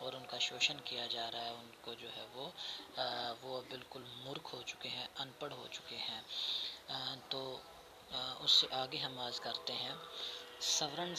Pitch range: 135-165 Hz